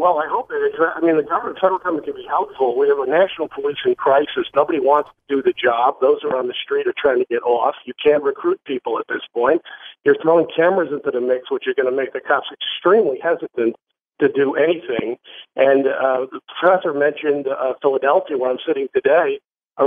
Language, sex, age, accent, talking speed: English, male, 50-69, American, 225 wpm